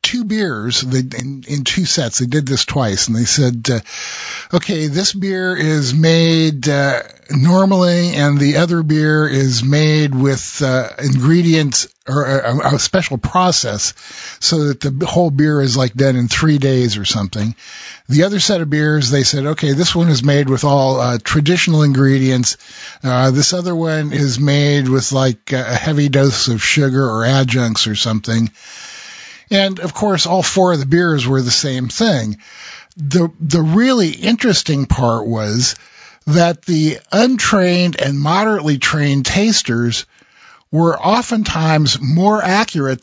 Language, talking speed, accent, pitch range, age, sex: English, 155 wpm, American, 130-170 Hz, 50-69, male